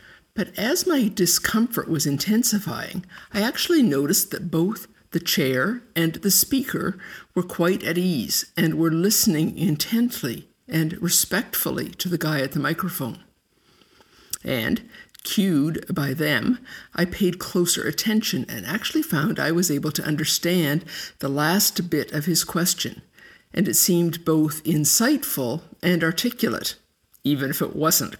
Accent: American